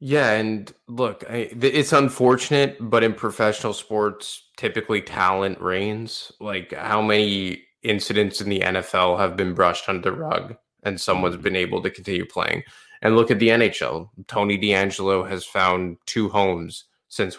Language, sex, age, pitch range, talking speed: English, male, 20-39, 95-110 Hz, 150 wpm